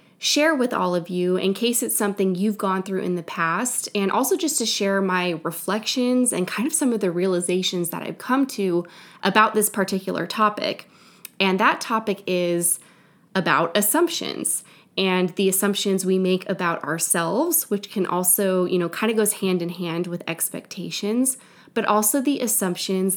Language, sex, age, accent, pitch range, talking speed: English, female, 20-39, American, 180-215 Hz, 175 wpm